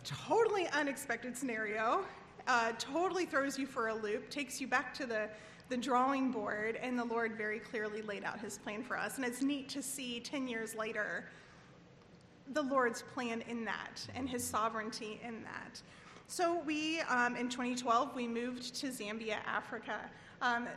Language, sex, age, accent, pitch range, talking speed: English, female, 30-49, American, 220-260 Hz, 170 wpm